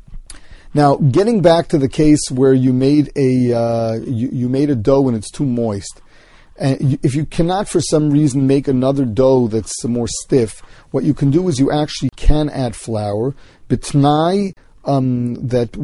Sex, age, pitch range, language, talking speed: male, 40-59, 125-150 Hz, English, 180 wpm